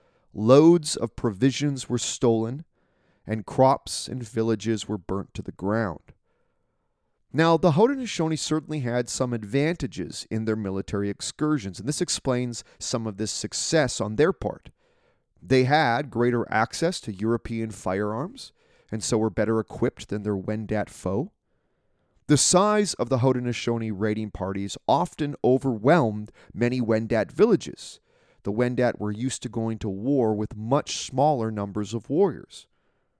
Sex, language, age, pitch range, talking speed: male, English, 30-49, 110-145 Hz, 140 wpm